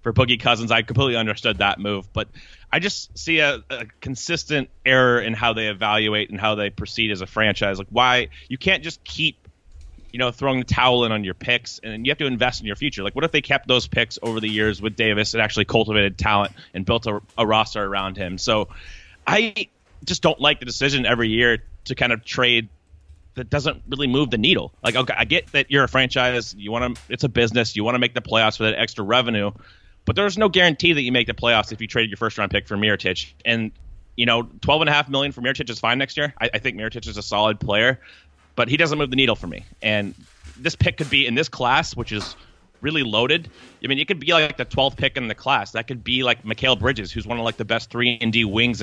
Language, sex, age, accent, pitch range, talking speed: English, male, 30-49, American, 105-135 Hz, 245 wpm